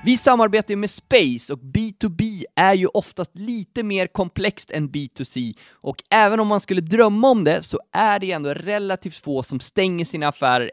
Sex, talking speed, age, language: male, 185 wpm, 20-39, Swedish